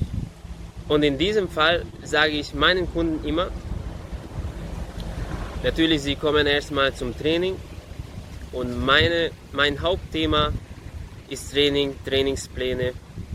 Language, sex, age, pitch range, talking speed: German, male, 20-39, 90-145 Hz, 100 wpm